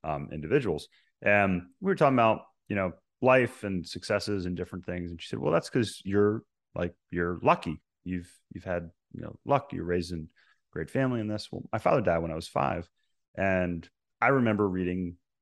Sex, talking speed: male, 195 wpm